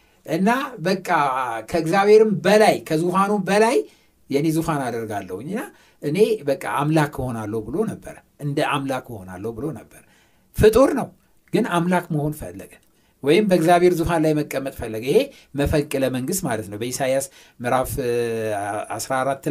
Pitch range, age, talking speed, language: 130-185 Hz, 60-79, 125 wpm, Amharic